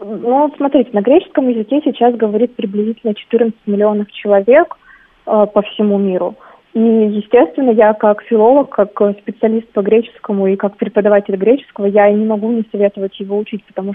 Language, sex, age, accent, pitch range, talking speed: Russian, female, 20-39, native, 205-230 Hz, 160 wpm